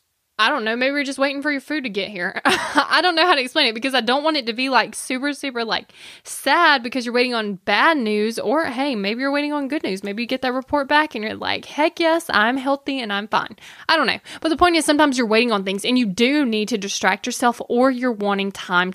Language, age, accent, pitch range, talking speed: English, 10-29, American, 210-275 Hz, 270 wpm